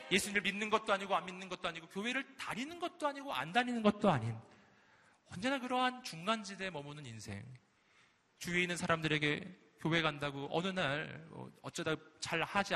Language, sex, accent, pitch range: Korean, male, native, 140-195 Hz